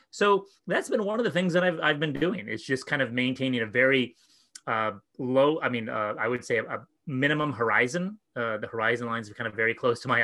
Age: 30-49